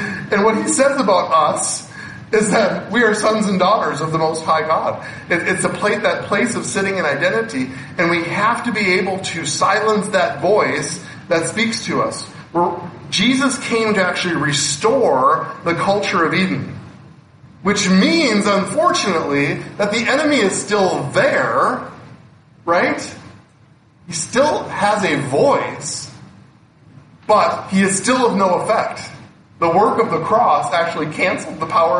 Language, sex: English, male